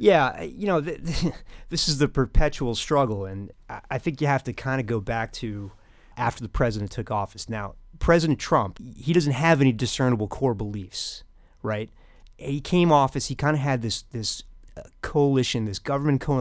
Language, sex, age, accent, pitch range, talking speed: English, male, 30-49, American, 110-140 Hz, 170 wpm